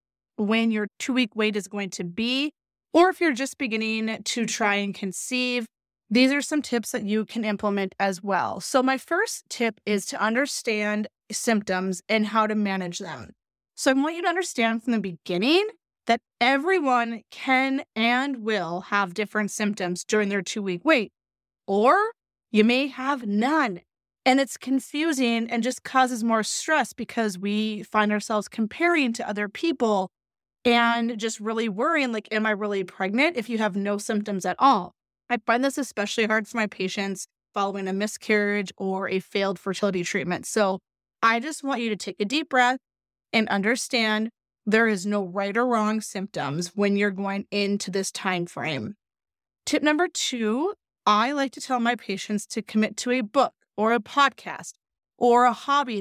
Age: 30-49